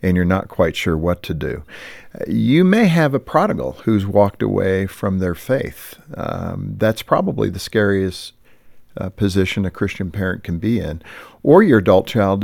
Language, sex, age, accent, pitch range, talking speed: English, male, 50-69, American, 90-110 Hz, 175 wpm